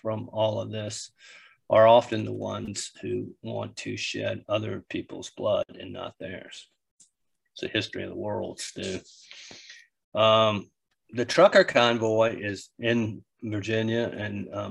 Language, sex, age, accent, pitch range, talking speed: English, male, 40-59, American, 105-120 Hz, 140 wpm